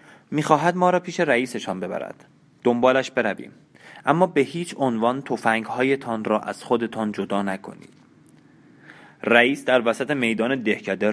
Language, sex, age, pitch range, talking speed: Persian, male, 30-49, 105-125 Hz, 125 wpm